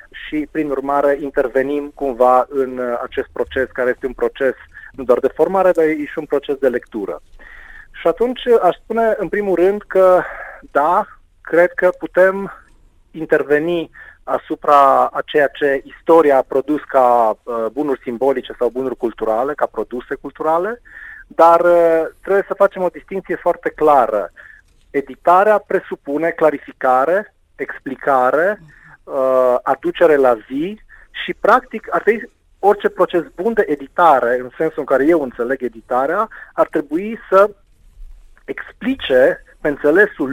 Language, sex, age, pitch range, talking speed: Romanian, male, 30-49, 130-185 Hz, 130 wpm